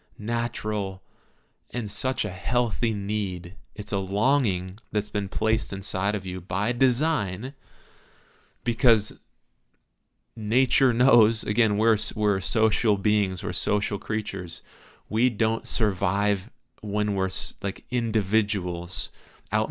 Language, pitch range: English, 95-115 Hz